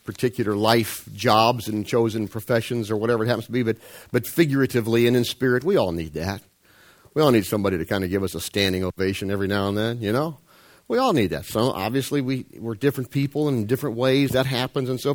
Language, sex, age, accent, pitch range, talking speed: English, male, 50-69, American, 95-140 Hz, 220 wpm